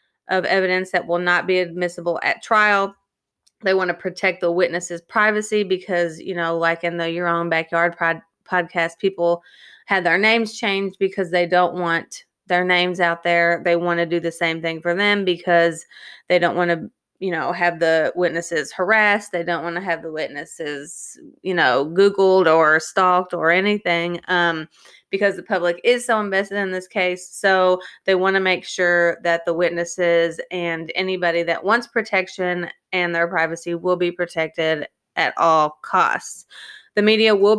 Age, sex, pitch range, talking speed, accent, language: 20-39, female, 170-195 Hz, 175 wpm, American, English